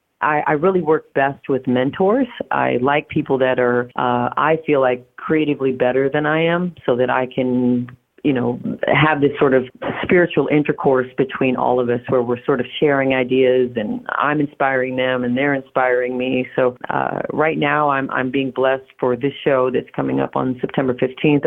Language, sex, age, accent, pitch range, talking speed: English, female, 40-59, American, 125-145 Hz, 185 wpm